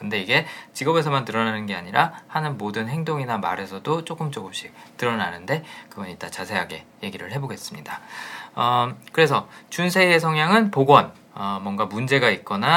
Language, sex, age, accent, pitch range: Korean, male, 20-39, native, 105-160 Hz